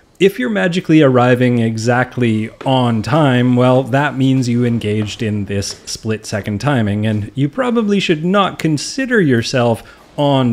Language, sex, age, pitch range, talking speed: English, male, 30-49, 110-150 Hz, 135 wpm